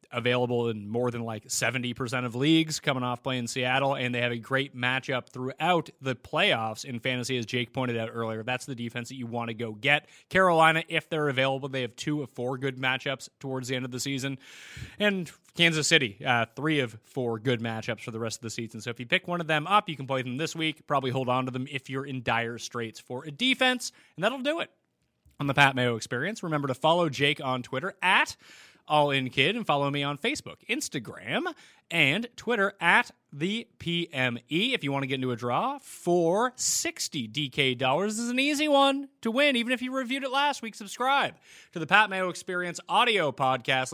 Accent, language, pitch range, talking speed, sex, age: American, English, 125-180 Hz, 220 wpm, male, 30-49